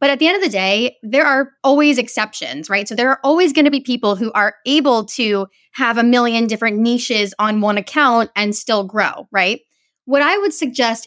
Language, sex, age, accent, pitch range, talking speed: English, female, 10-29, American, 210-285 Hz, 215 wpm